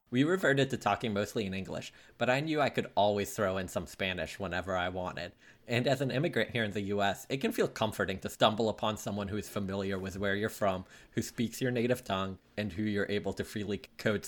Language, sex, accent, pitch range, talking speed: English, male, American, 95-120 Hz, 230 wpm